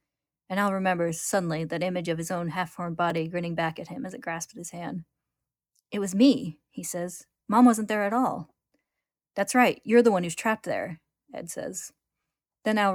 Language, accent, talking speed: English, American, 195 wpm